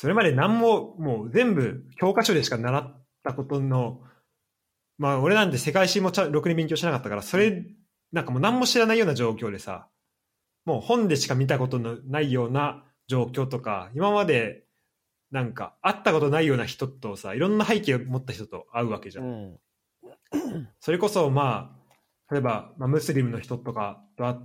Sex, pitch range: male, 110-165 Hz